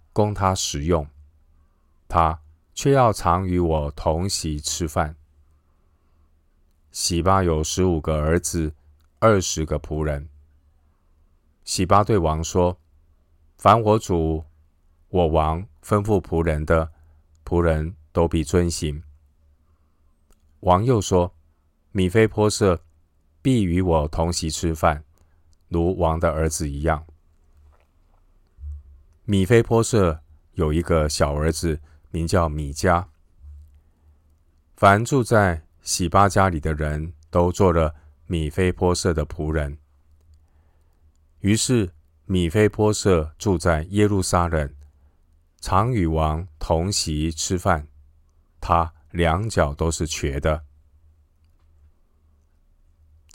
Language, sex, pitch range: Chinese, male, 75-90 Hz